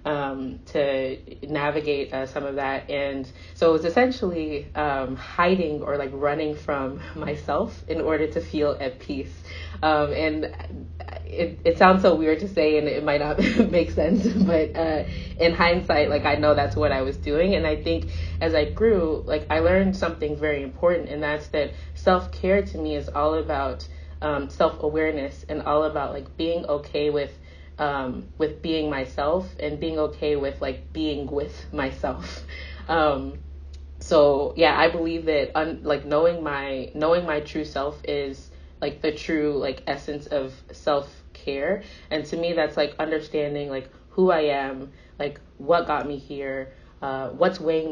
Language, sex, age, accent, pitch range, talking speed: English, female, 20-39, American, 135-155 Hz, 170 wpm